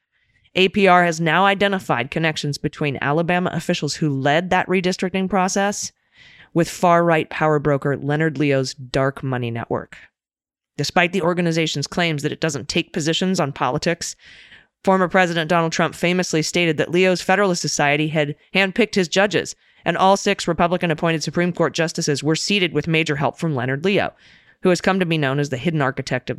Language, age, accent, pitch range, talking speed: English, 20-39, American, 150-185 Hz, 165 wpm